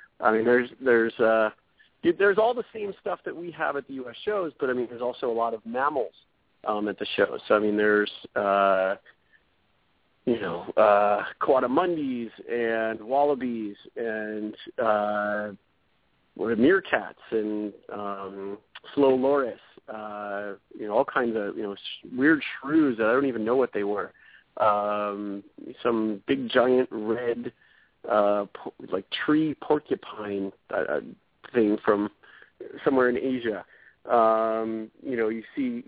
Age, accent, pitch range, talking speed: 40-59, American, 105-125 Hz, 145 wpm